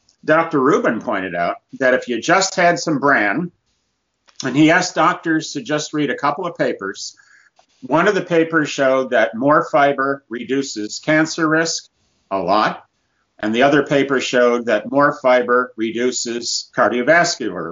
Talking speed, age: 150 wpm, 50-69